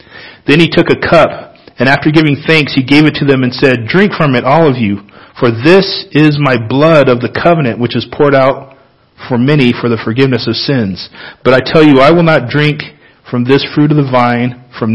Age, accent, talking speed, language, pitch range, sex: 40-59, American, 225 wpm, English, 115-150 Hz, male